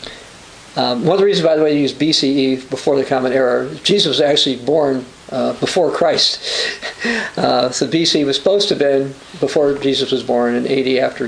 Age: 50-69